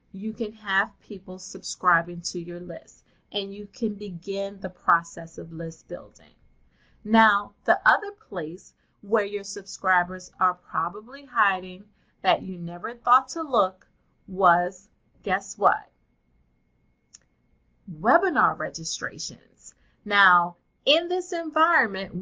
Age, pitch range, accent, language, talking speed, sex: 30-49, 185-245 Hz, American, English, 115 wpm, female